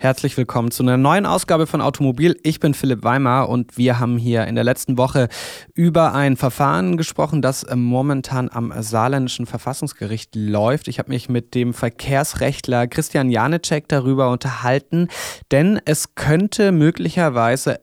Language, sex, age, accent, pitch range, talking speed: German, male, 20-39, German, 120-150 Hz, 150 wpm